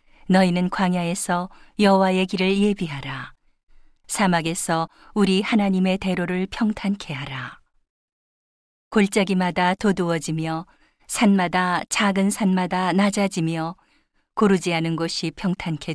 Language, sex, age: Korean, female, 40-59